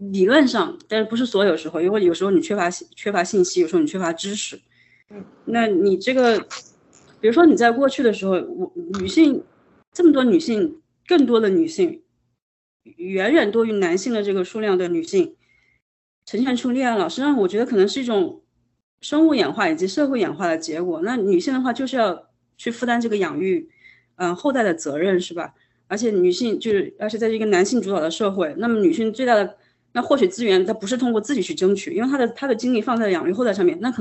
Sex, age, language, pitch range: female, 20-39, Chinese, 200-320 Hz